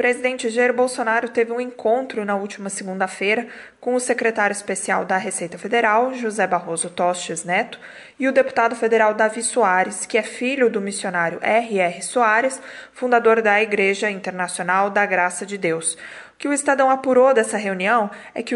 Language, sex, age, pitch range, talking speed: Portuguese, female, 20-39, 195-240 Hz, 165 wpm